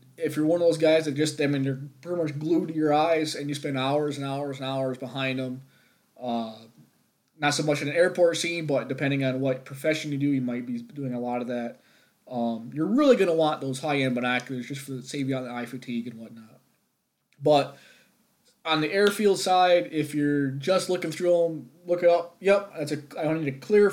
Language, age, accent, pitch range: English, 20-39, American, 125-160 Hz